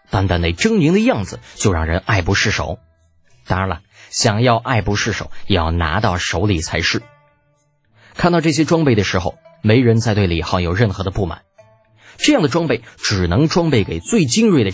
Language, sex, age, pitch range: Chinese, male, 20-39, 95-140 Hz